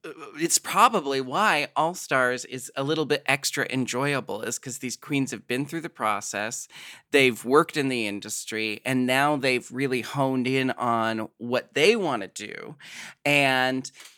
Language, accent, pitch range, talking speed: English, American, 115-145 Hz, 160 wpm